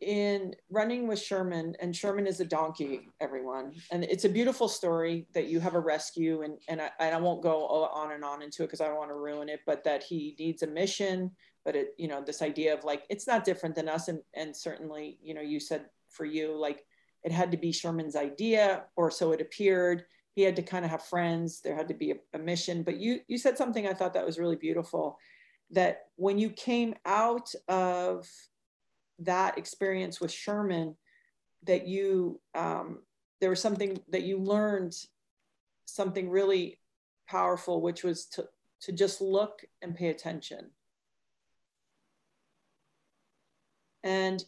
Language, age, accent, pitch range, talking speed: English, 40-59, American, 160-195 Hz, 180 wpm